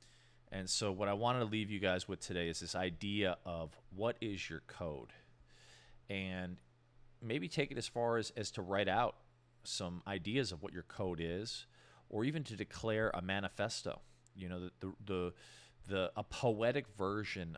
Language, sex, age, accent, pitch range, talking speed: English, male, 40-59, American, 90-115 Hz, 180 wpm